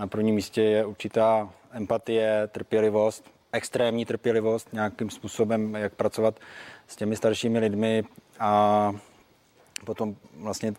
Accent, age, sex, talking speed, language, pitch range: native, 20-39, male, 110 wpm, Czech, 105-110 Hz